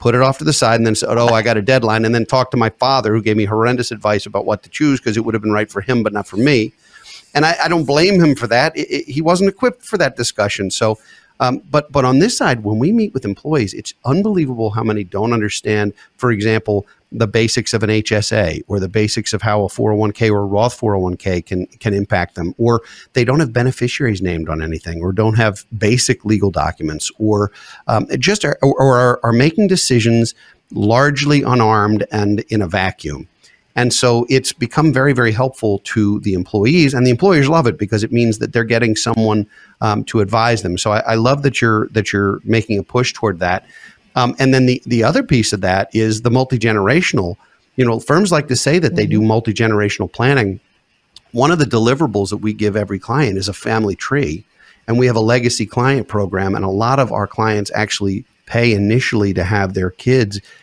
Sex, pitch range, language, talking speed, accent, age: male, 105-130 Hz, English, 220 wpm, American, 50-69